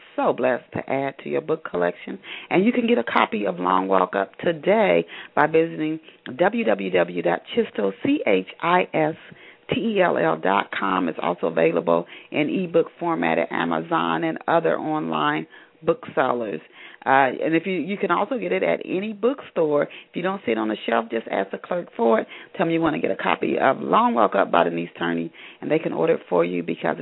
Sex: female